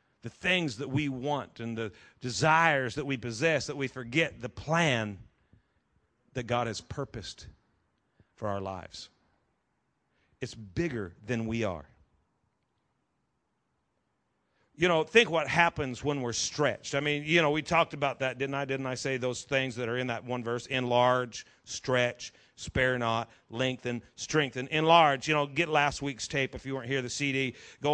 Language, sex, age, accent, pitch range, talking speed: English, male, 50-69, American, 125-165 Hz, 165 wpm